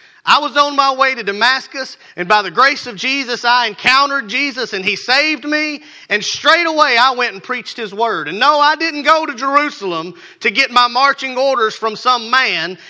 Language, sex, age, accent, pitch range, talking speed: English, male, 30-49, American, 205-280 Hz, 205 wpm